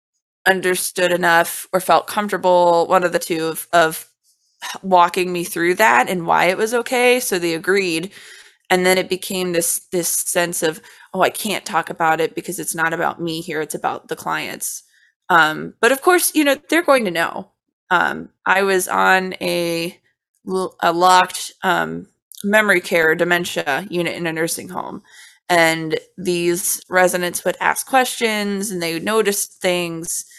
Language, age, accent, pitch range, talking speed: English, 20-39, American, 170-205 Hz, 165 wpm